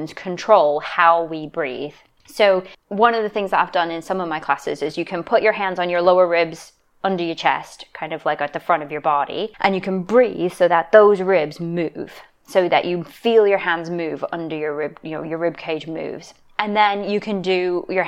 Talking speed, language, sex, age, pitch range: 230 wpm, English, female, 20-39, 160-190 Hz